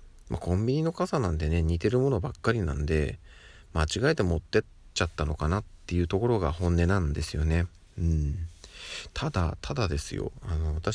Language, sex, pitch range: Japanese, male, 80-105 Hz